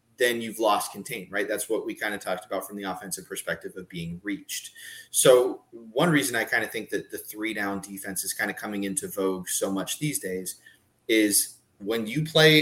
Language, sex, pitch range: English, male, 100-140 Hz